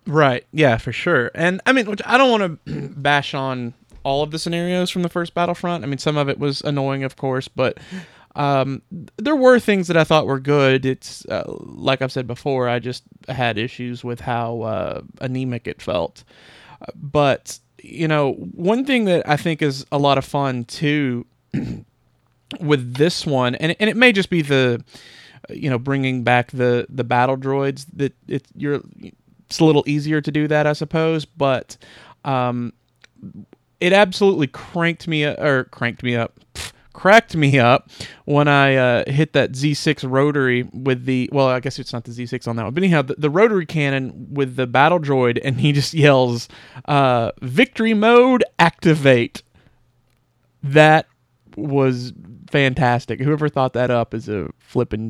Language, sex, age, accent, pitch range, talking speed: English, male, 30-49, American, 125-155 Hz, 180 wpm